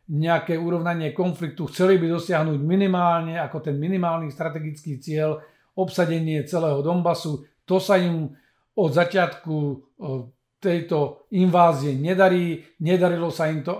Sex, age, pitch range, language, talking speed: male, 50-69, 150-175 Hz, Slovak, 115 wpm